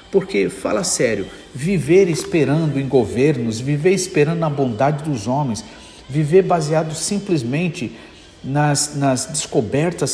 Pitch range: 120-170 Hz